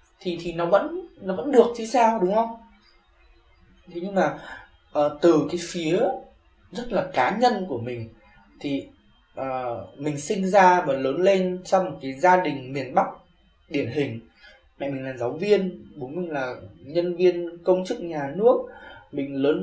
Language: Vietnamese